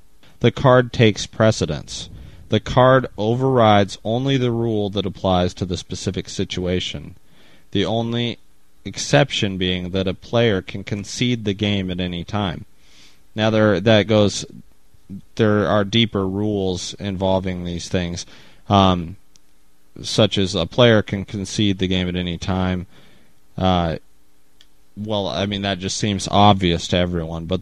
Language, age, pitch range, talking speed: English, 30-49, 90-105 Hz, 140 wpm